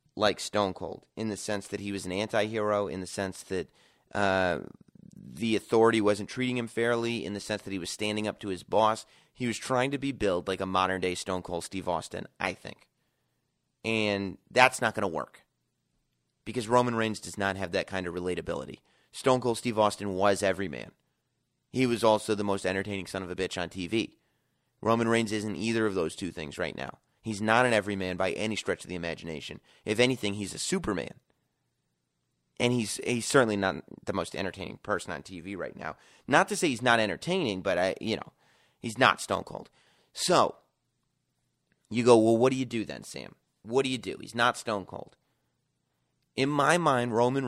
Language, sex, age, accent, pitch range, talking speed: English, male, 30-49, American, 95-120 Hz, 200 wpm